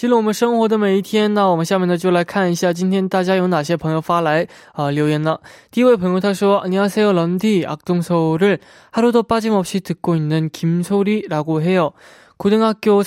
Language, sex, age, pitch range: Korean, male, 20-39, 155-200 Hz